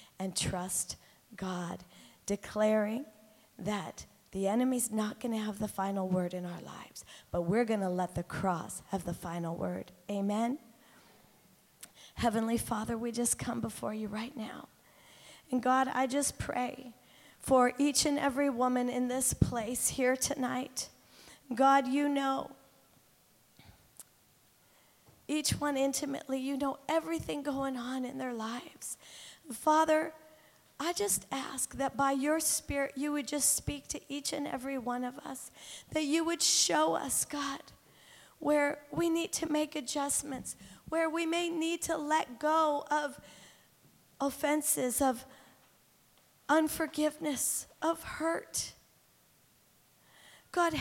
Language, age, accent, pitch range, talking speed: English, 40-59, American, 230-300 Hz, 130 wpm